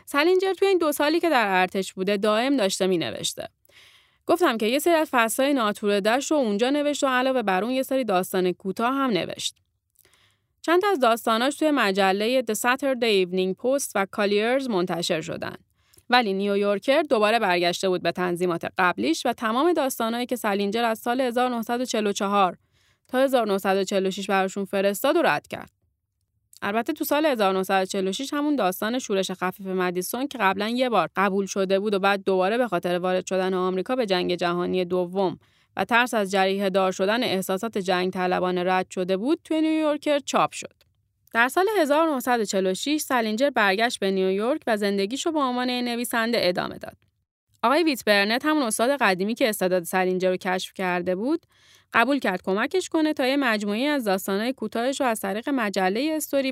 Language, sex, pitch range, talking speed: Persian, female, 190-270 Hz, 165 wpm